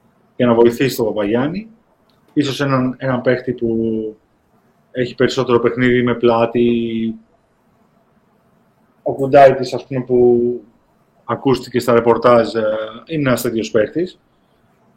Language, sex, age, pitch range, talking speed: Greek, male, 30-49, 125-185 Hz, 100 wpm